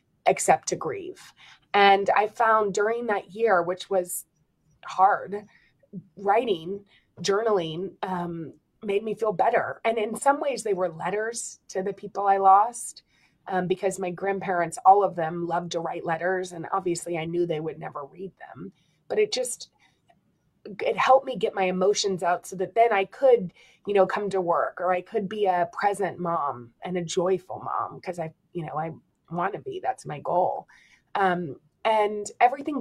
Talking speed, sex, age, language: 175 wpm, female, 20-39, English